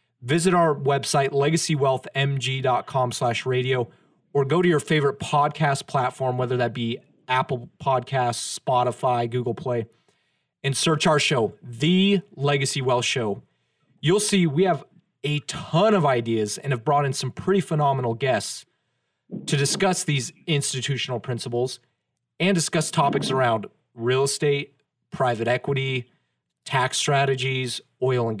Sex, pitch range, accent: male, 125-155 Hz, American